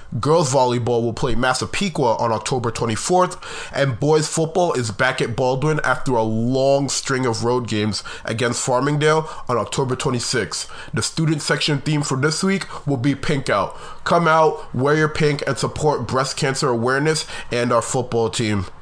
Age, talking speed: 20-39, 165 wpm